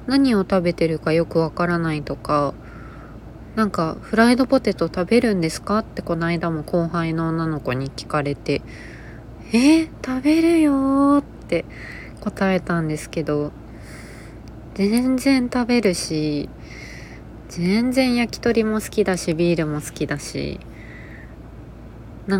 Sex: female